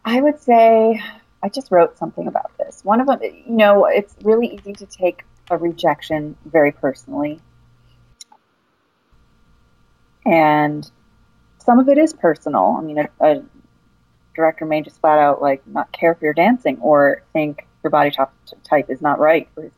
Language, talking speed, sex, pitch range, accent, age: English, 165 wpm, female, 140-190 Hz, American, 30-49